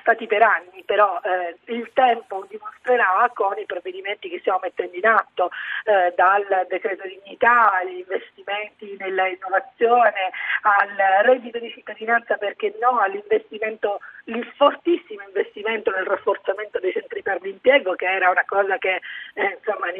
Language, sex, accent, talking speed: Italian, female, native, 145 wpm